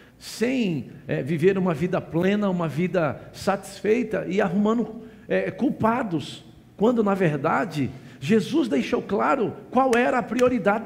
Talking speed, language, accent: 115 wpm, Portuguese, Brazilian